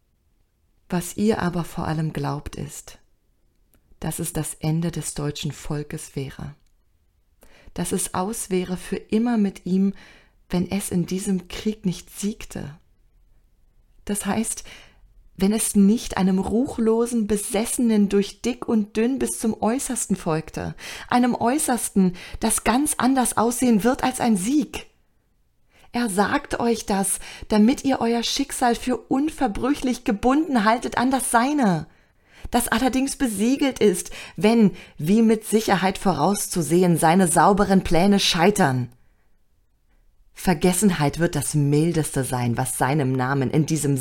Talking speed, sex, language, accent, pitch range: 130 wpm, female, Polish, German, 160-230 Hz